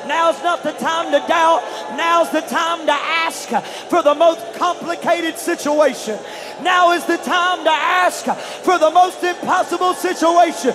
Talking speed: 150 wpm